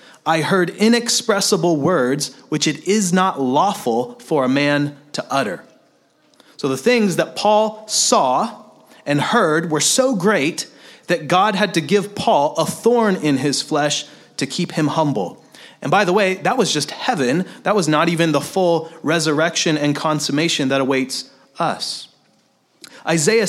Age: 30-49